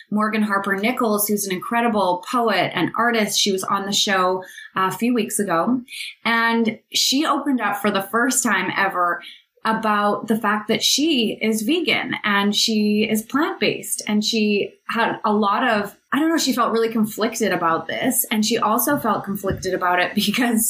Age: 20-39